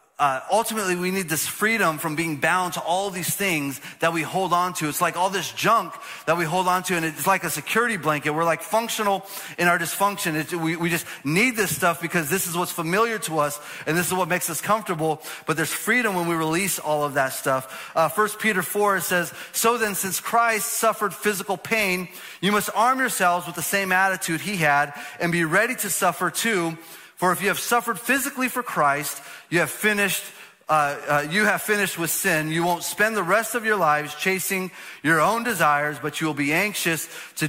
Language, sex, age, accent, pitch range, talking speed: English, male, 30-49, American, 150-195 Hz, 215 wpm